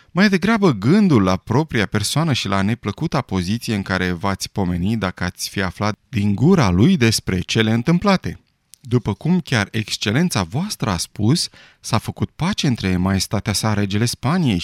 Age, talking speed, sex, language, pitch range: 30-49, 160 wpm, male, Romanian, 100-145 Hz